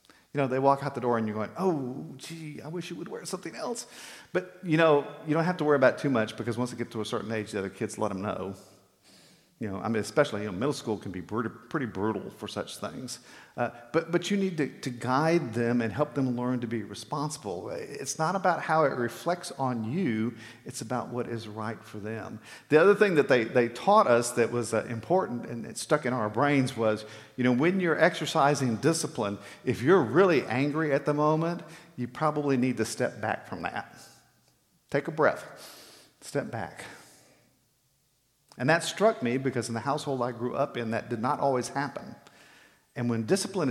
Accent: American